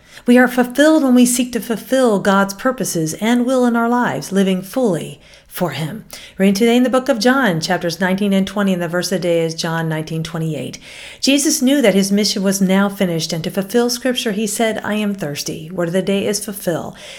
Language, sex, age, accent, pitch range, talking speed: English, female, 40-59, American, 185-245 Hz, 215 wpm